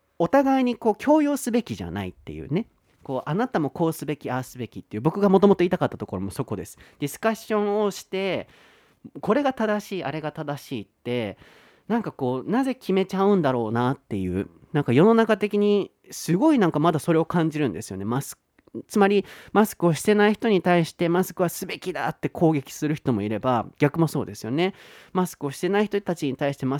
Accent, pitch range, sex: native, 130-205 Hz, male